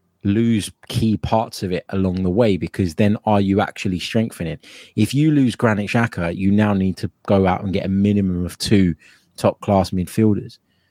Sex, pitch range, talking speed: male, 95-110 Hz, 185 wpm